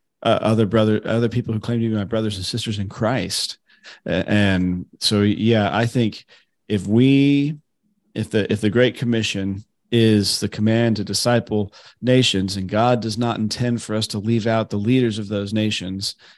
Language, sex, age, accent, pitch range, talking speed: English, male, 40-59, American, 105-120 Hz, 185 wpm